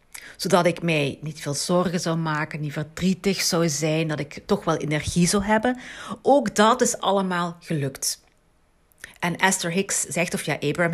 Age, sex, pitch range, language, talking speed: 40-59, female, 160-205 Hz, Dutch, 170 wpm